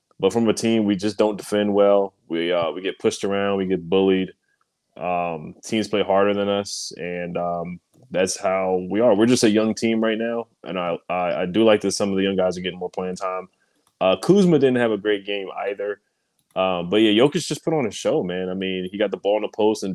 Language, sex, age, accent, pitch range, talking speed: English, male, 20-39, American, 95-110 Hz, 245 wpm